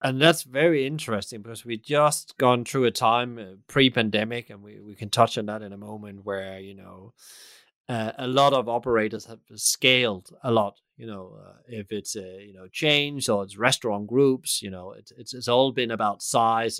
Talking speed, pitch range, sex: 205 wpm, 100-120 Hz, male